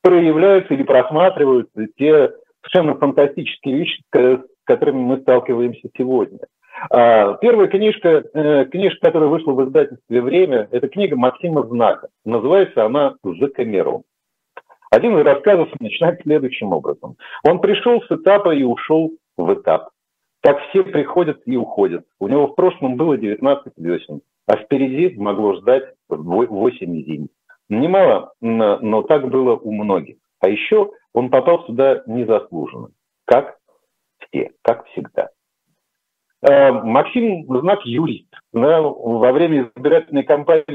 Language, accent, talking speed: Russian, native, 120 wpm